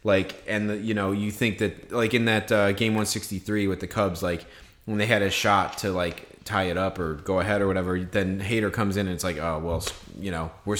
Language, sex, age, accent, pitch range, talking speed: English, male, 30-49, American, 105-135 Hz, 250 wpm